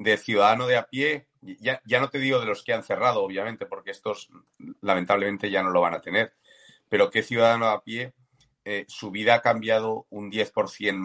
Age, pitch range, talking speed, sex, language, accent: 40-59, 110-145 Hz, 205 wpm, male, Spanish, Spanish